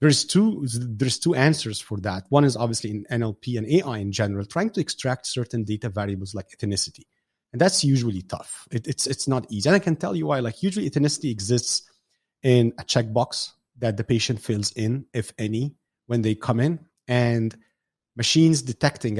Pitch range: 110-140 Hz